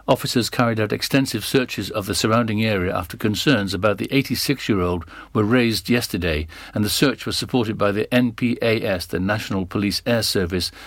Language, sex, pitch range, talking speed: English, male, 105-125 Hz, 165 wpm